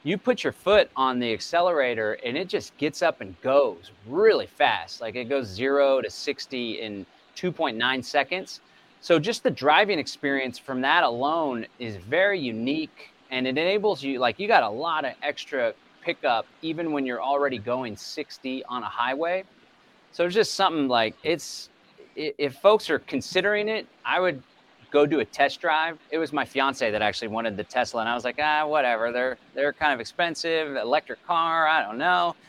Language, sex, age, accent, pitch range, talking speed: English, male, 30-49, American, 120-160 Hz, 185 wpm